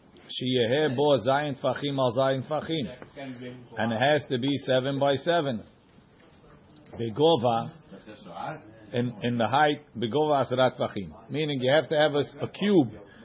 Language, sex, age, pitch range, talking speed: English, male, 50-69, 125-150 Hz, 145 wpm